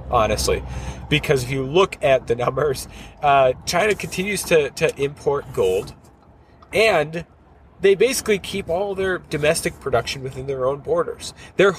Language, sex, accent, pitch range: English, male, American, 125-190 Hz